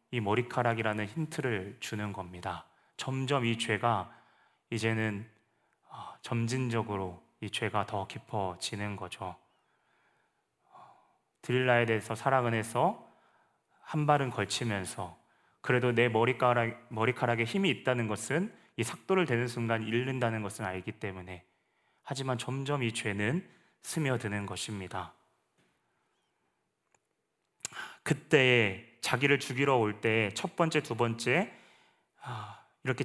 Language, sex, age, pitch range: Korean, male, 30-49, 110-140 Hz